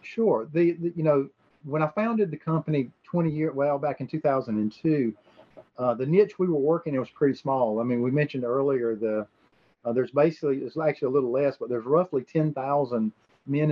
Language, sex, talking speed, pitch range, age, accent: English, male, 195 wpm, 120-150 Hz, 40-59, American